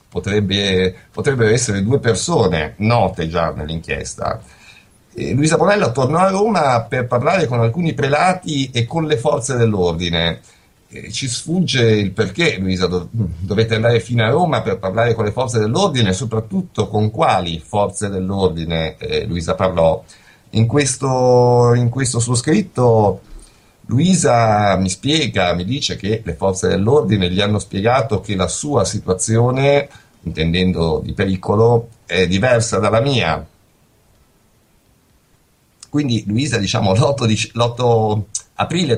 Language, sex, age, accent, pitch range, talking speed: Italian, male, 50-69, native, 95-125 Hz, 135 wpm